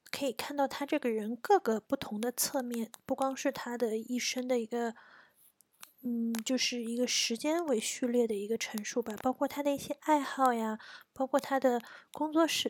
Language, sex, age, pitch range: Chinese, female, 20-39, 225-280 Hz